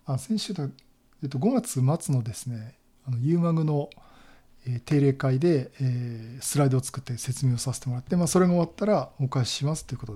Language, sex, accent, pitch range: Japanese, male, native, 125-150 Hz